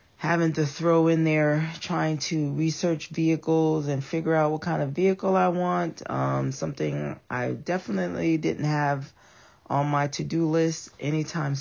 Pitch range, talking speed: 125-160 Hz, 150 wpm